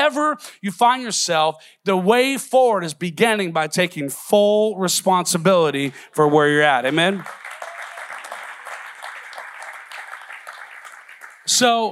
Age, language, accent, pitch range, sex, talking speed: 40-59, English, American, 175-215 Hz, male, 90 wpm